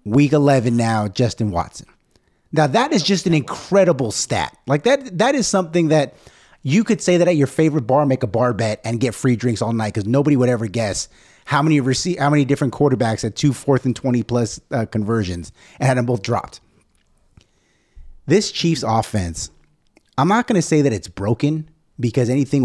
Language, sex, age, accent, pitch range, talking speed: English, male, 30-49, American, 115-160 Hz, 195 wpm